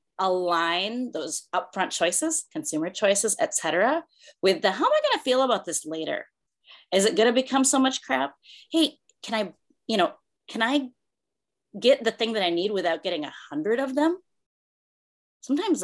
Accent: American